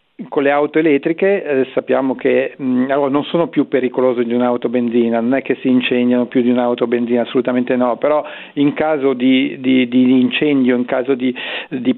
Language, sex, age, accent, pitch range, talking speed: Italian, male, 50-69, native, 130-150 Hz, 190 wpm